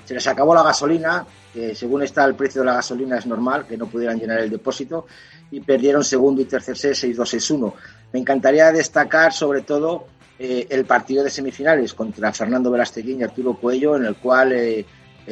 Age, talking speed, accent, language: 40-59, 190 wpm, Spanish, Spanish